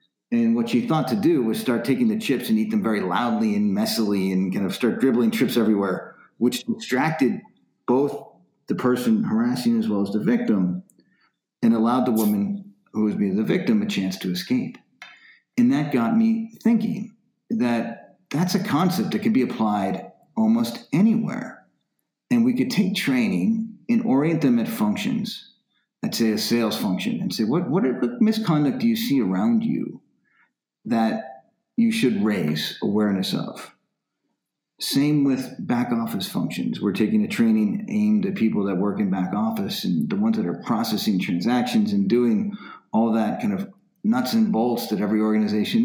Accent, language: American, English